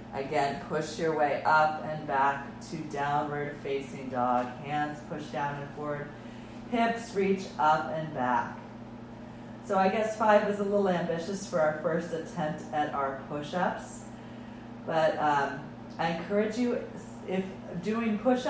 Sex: female